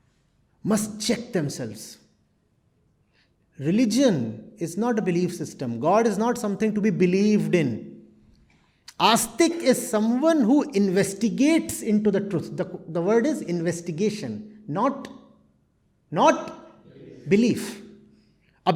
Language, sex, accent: English, male, Indian